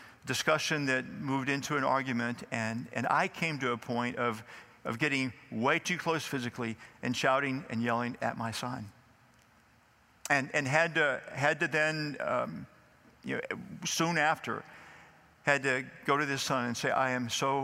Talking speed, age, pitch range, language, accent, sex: 170 wpm, 50-69, 125-160 Hz, English, American, male